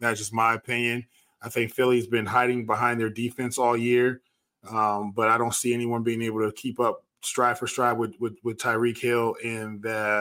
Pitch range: 115-125 Hz